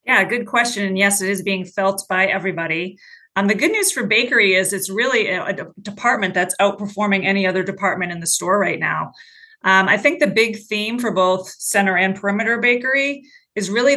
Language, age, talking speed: English, 30-49, 200 wpm